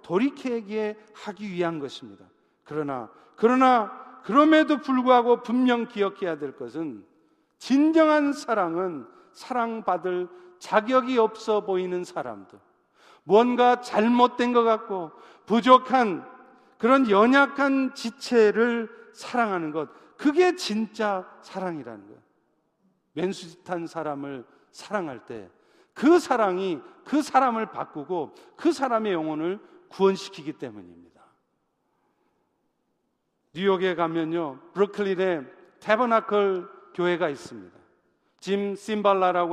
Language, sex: Korean, male